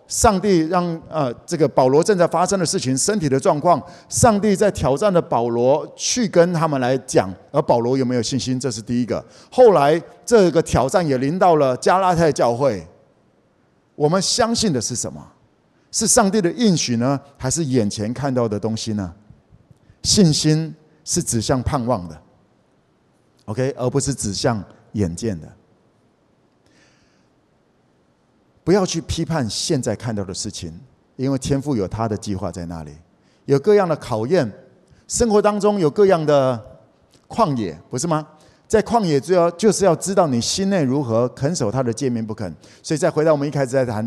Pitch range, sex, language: 115-180 Hz, male, Chinese